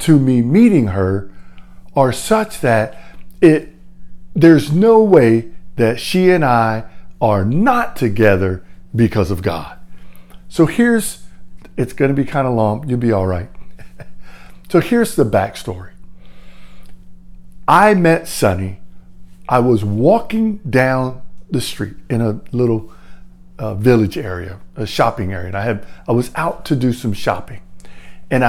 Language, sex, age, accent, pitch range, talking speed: English, male, 50-69, American, 95-150 Hz, 140 wpm